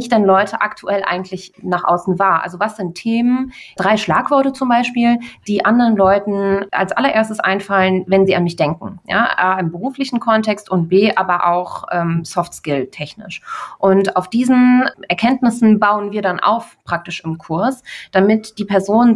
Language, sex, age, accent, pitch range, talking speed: German, female, 20-39, German, 185-225 Hz, 160 wpm